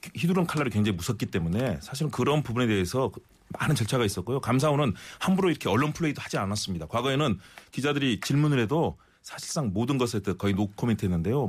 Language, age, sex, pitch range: Korean, 30-49, male, 105-150 Hz